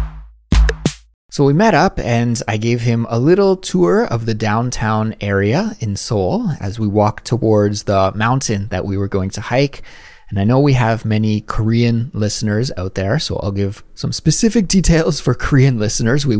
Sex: male